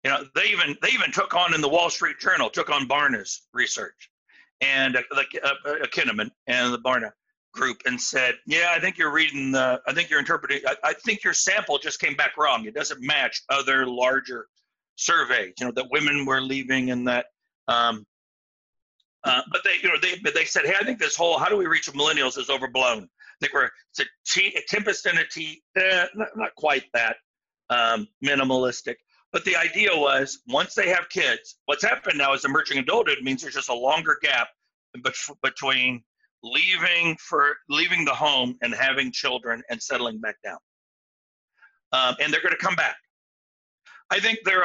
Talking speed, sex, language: 190 wpm, male, English